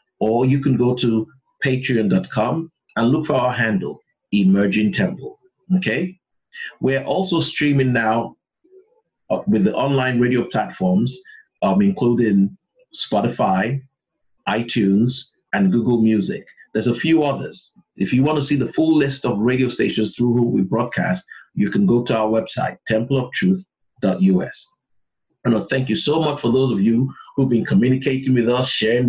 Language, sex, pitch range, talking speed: English, male, 115-140 Hz, 150 wpm